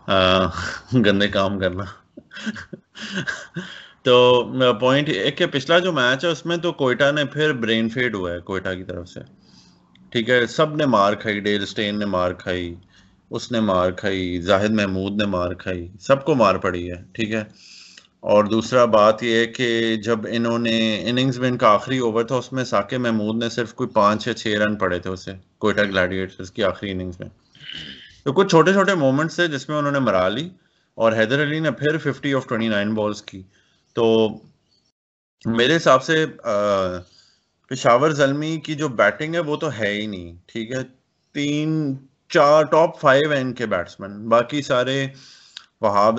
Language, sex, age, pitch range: Urdu, male, 30-49, 100-135 Hz